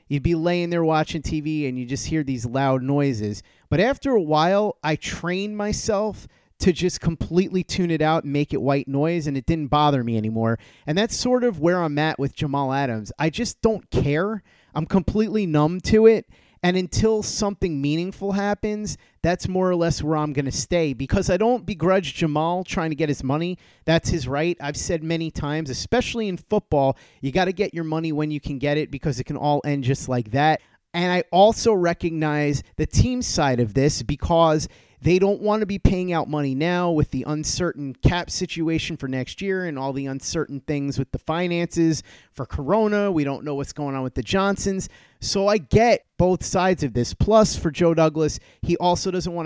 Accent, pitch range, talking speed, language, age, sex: American, 140-180 Hz, 205 wpm, English, 30-49, male